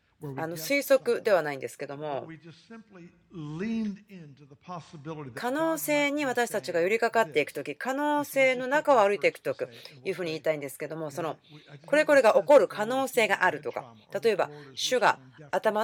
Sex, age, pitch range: female, 30-49, 155-250 Hz